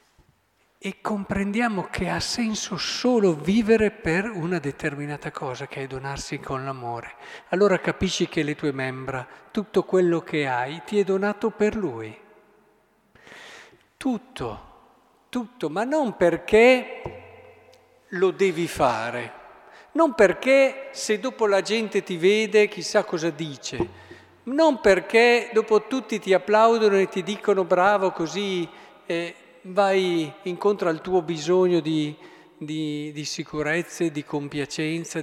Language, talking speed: Italian, 125 wpm